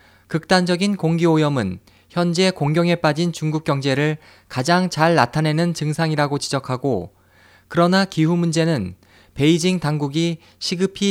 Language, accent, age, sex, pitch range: Korean, native, 20-39, male, 120-175 Hz